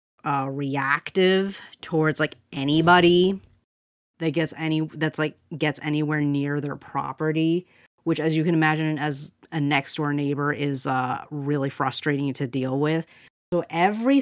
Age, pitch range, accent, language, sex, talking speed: 30-49, 140-165 Hz, American, English, female, 145 wpm